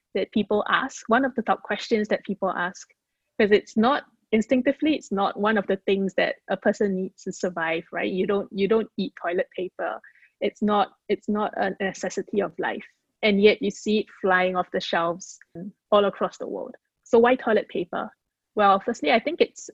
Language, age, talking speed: English, 20-39, 200 wpm